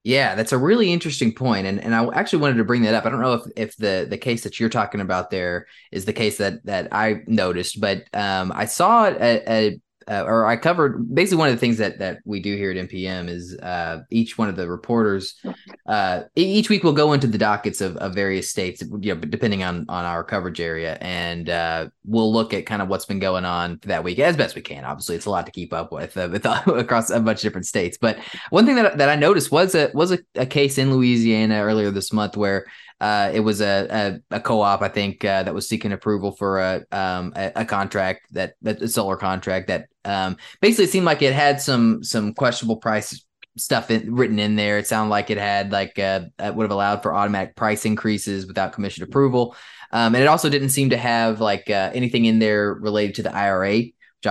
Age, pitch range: 20-39, 95-115 Hz